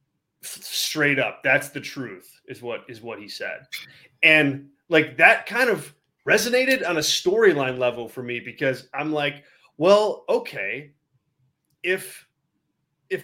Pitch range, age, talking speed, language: 135-170 Hz, 20-39, 135 wpm, English